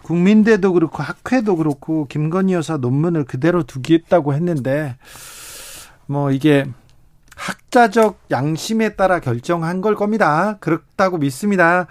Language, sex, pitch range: Korean, male, 145-195 Hz